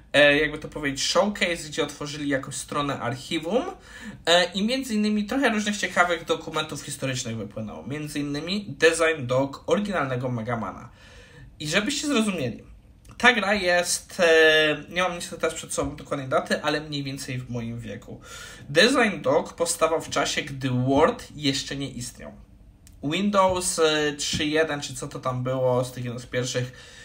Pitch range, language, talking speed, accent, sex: 130-165 Hz, Polish, 145 wpm, native, male